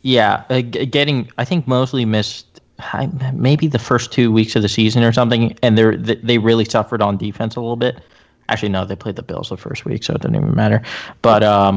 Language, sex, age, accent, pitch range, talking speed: English, male, 20-39, American, 105-125 Hz, 210 wpm